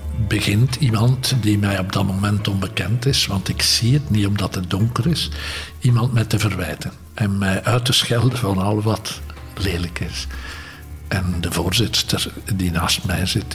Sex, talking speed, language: male, 175 wpm, Dutch